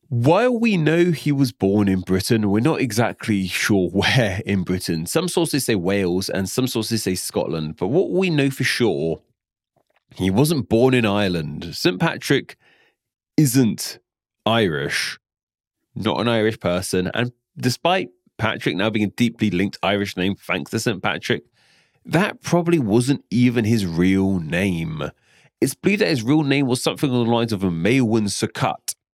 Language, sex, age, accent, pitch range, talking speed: English, male, 30-49, British, 95-145 Hz, 165 wpm